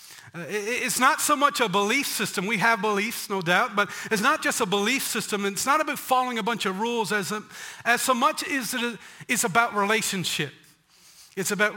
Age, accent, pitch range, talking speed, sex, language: 40-59, American, 200-245 Hz, 195 wpm, male, English